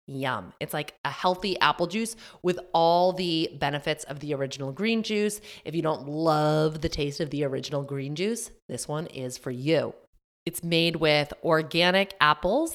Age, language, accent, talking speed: 20-39, English, American, 175 wpm